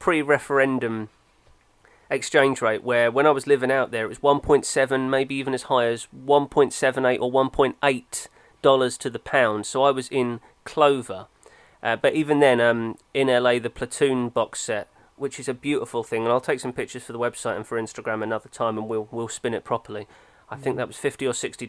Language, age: English, 30-49